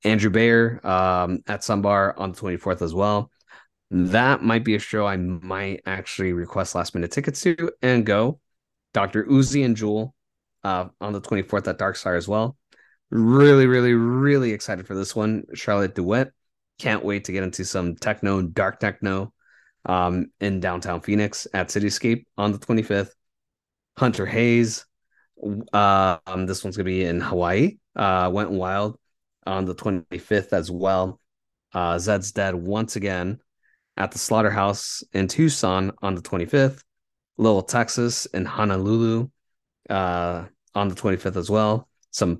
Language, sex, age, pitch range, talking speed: English, male, 20-39, 90-115 Hz, 150 wpm